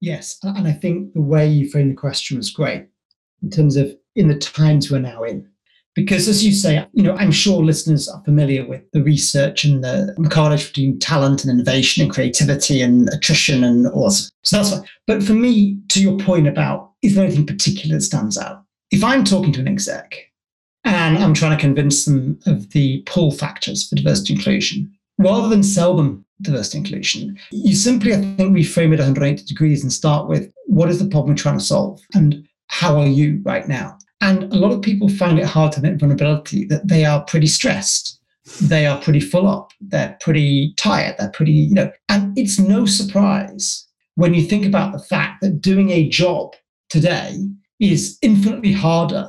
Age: 40-59